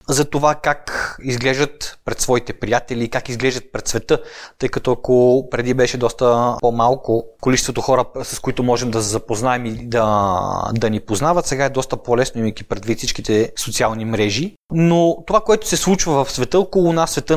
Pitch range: 120-150 Hz